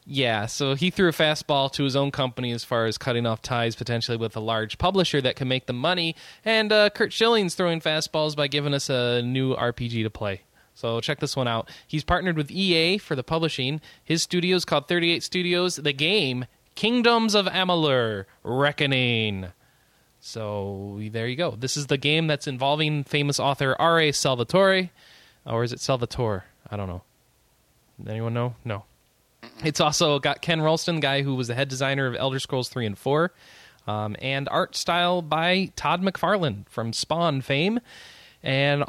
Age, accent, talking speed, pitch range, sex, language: 20-39, American, 180 wpm, 125-175 Hz, male, English